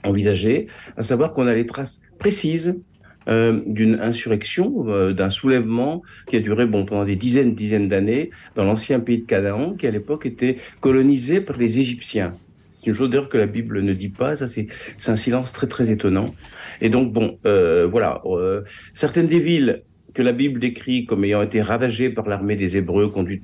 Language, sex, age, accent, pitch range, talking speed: French, male, 50-69, French, 105-130 Hz, 195 wpm